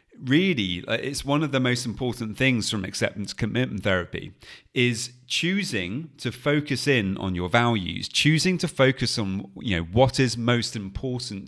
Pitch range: 100-130 Hz